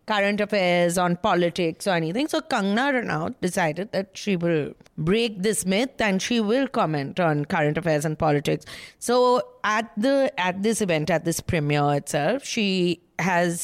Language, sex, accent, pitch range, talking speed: English, female, Indian, 170-240 Hz, 165 wpm